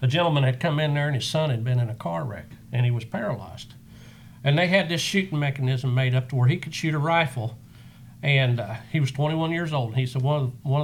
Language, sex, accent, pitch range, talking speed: English, male, American, 125-150 Hz, 245 wpm